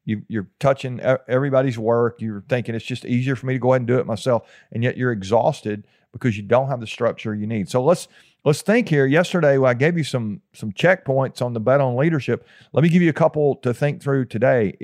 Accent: American